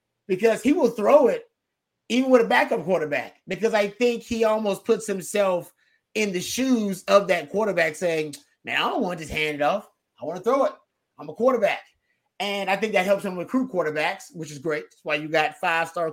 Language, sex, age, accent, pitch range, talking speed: English, male, 30-49, American, 160-210 Hz, 210 wpm